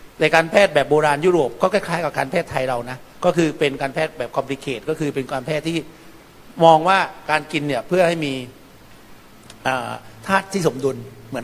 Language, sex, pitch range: Thai, male, 135-165 Hz